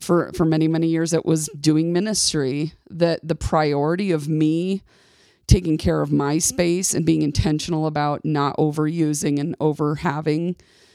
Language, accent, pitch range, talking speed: English, American, 150-175 Hz, 155 wpm